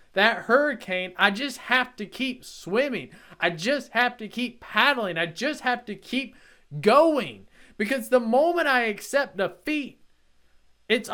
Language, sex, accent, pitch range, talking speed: English, male, American, 205-270 Hz, 145 wpm